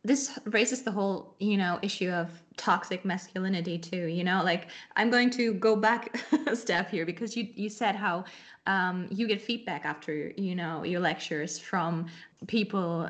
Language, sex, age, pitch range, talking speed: English, female, 20-39, 180-230 Hz, 175 wpm